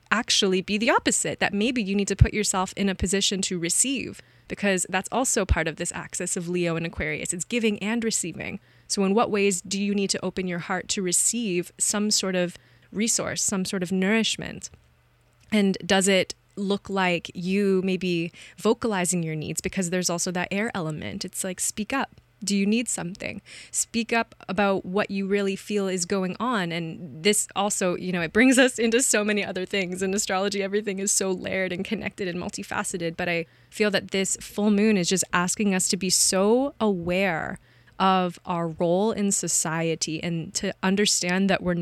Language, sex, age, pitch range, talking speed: English, female, 20-39, 175-205 Hz, 190 wpm